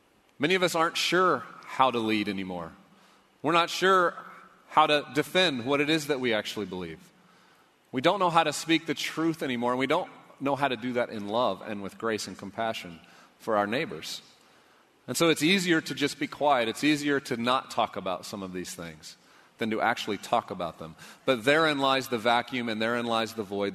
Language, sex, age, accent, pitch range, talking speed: English, male, 40-59, American, 115-150 Hz, 210 wpm